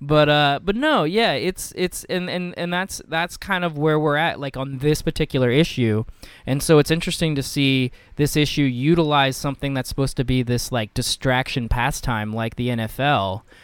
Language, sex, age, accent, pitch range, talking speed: English, male, 20-39, American, 120-150 Hz, 190 wpm